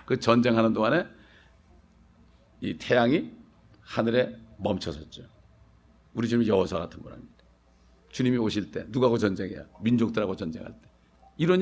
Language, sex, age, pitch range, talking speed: English, male, 60-79, 120-175 Hz, 115 wpm